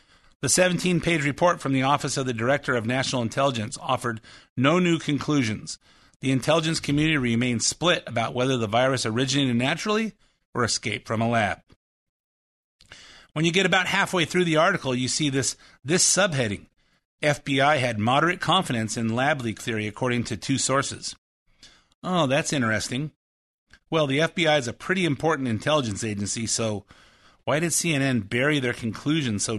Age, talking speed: 50-69, 155 wpm